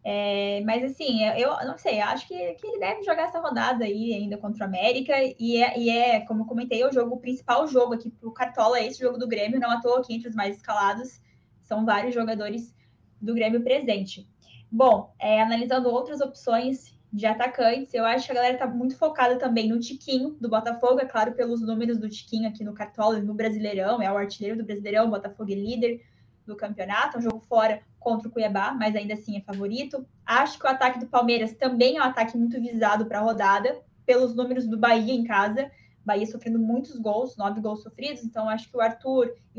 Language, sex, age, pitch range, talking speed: Portuguese, female, 10-29, 215-250 Hz, 215 wpm